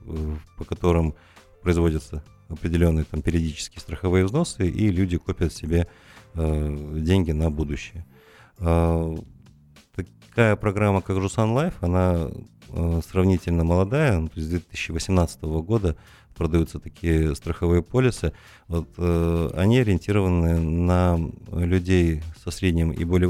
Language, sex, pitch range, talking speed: Russian, male, 80-100 Hz, 110 wpm